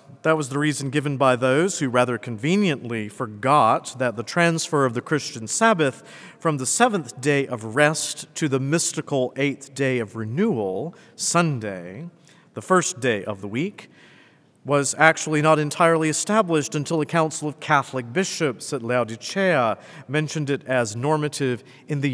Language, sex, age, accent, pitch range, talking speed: English, male, 50-69, American, 125-165 Hz, 155 wpm